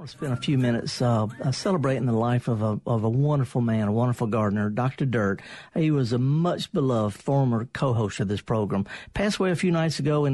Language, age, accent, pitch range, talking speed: English, 50-69, American, 125-165 Hz, 210 wpm